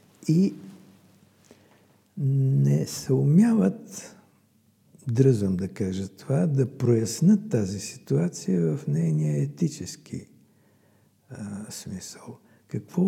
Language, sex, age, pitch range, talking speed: Bulgarian, male, 60-79, 105-140 Hz, 80 wpm